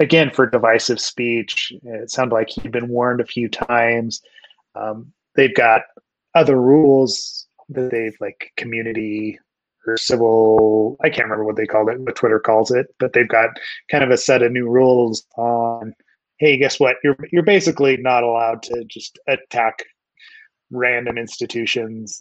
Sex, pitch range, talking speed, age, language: male, 115-150 Hz, 160 wpm, 20-39, English